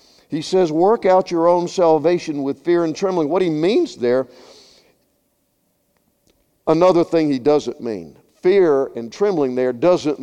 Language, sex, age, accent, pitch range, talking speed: English, male, 50-69, American, 155-205 Hz, 145 wpm